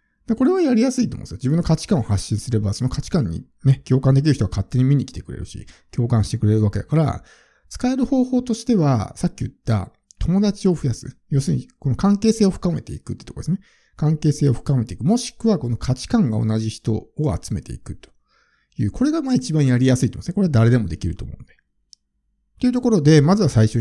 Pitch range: 110-170 Hz